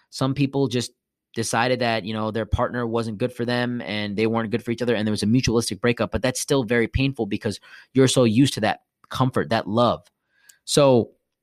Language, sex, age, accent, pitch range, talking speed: English, male, 20-39, American, 105-130 Hz, 215 wpm